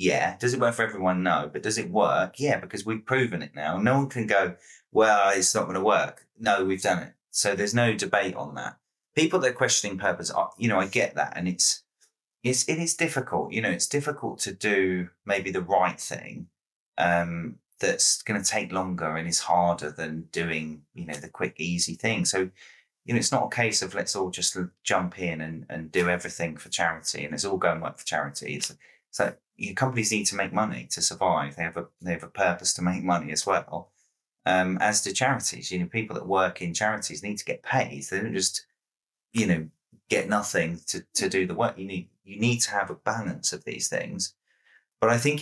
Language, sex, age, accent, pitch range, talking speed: English, male, 20-39, British, 85-110 Hz, 225 wpm